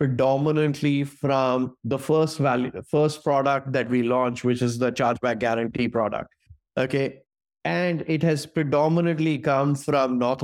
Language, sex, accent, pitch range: English, male, Indian, 125-150 Hz